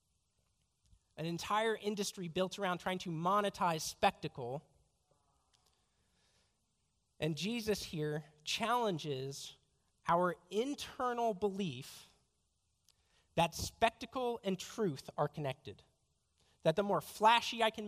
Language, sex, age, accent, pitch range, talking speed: English, male, 40-59, American, 150-215 Hz, 95 wpm